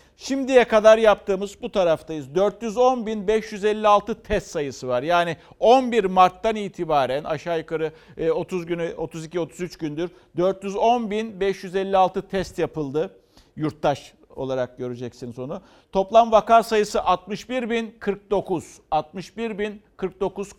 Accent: native